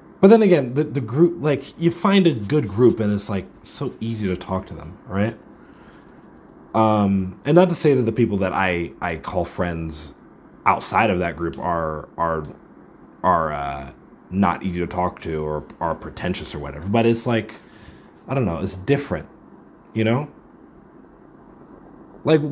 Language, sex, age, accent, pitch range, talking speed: English, male, 30-49, American, 90-110 Hz, 170 wpm